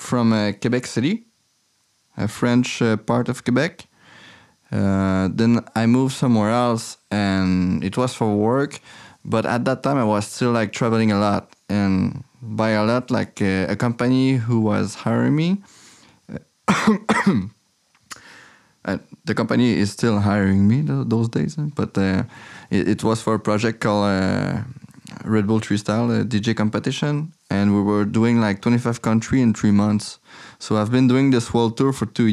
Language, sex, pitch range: English, male, 105-125 Hz